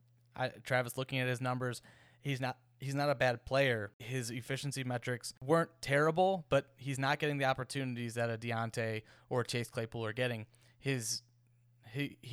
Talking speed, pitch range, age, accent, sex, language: 160 wpm, 120-140 Hz, 20-39, American, male, English